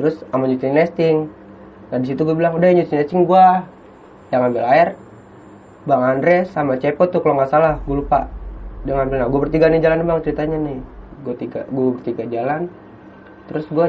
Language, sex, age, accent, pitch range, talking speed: Indonesian, male, 20-39, native, 125-170 Hz, 185 wpm